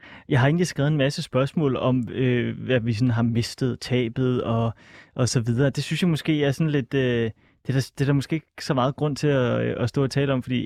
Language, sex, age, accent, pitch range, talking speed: Danish, male, 30-49, native, 125-150 Hz, 260 wpm